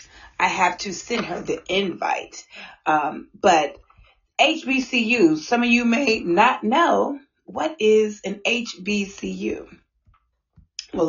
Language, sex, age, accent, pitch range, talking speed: English, female, 30-49, American, 170-260 Hz, 115 wpm